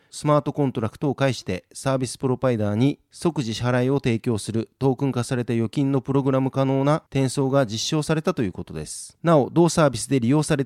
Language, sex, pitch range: Japanese, male, 120-150 Hz